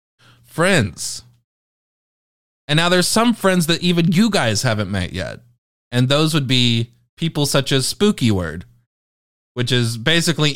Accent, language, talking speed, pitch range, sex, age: American, English, 140 wpm, 110-170 Hz, male, 20-39